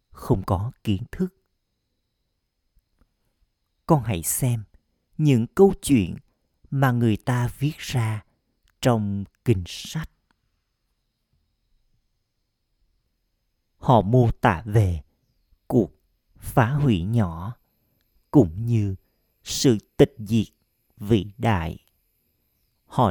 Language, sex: Vietnamese, male